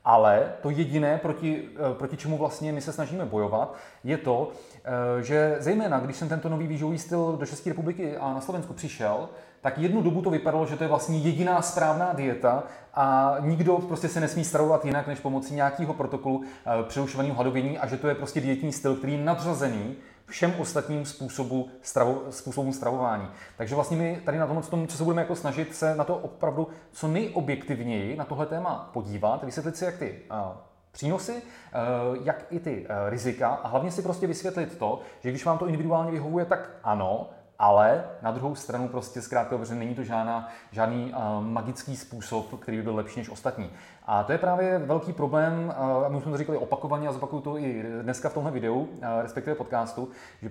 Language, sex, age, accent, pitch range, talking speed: Czech, male, 30-49, native, 125-160 Hz, 185 wpm